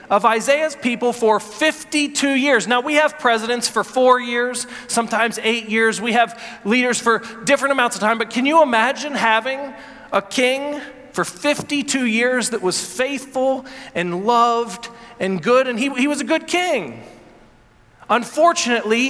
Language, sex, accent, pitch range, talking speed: English, male, American, 225-275 Hz, 155 wpm